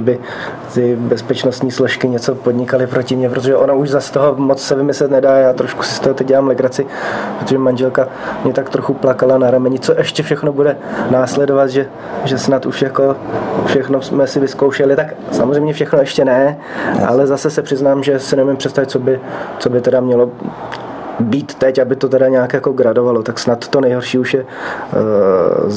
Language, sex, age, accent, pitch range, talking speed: Czech, male, 20-39, native, 120-135 Hz, 190 wpm